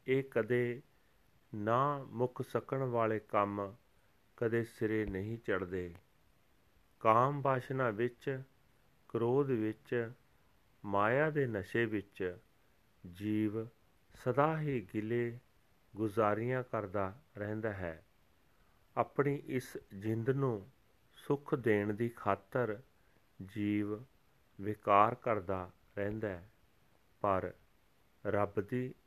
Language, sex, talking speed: Punjabi, male, 85 wpm